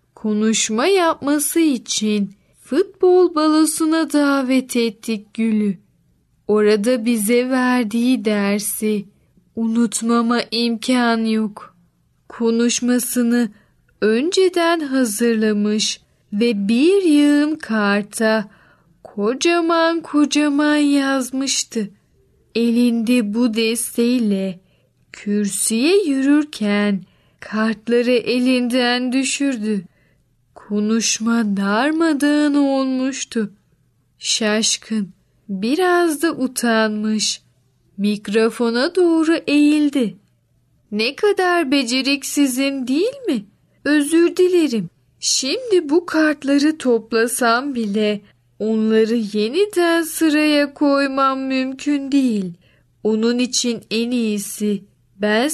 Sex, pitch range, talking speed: female, 215-290 Hz, 70 wpm